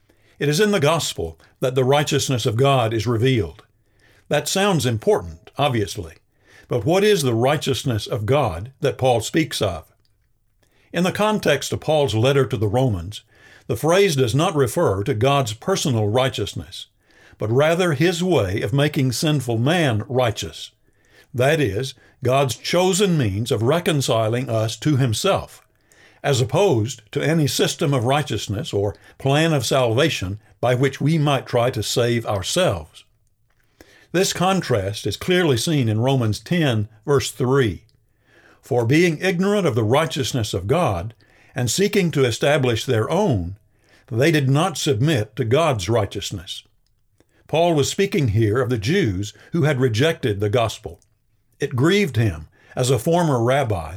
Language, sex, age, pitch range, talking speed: English, male, 60-79, 105-145 Hz, 145 wpm